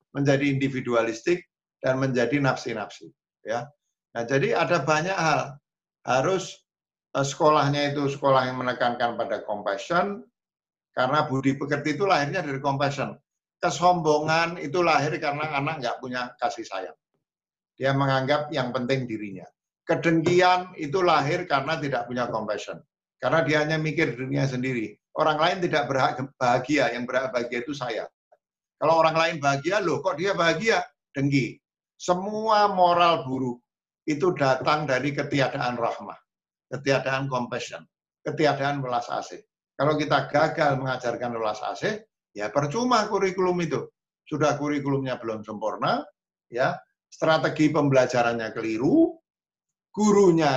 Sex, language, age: male, Malay, 50-69